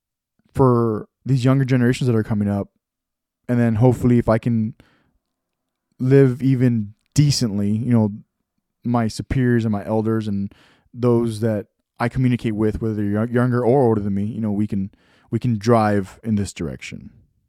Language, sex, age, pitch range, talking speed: English, male, 20-39, 105-125 Hz, 160 wpm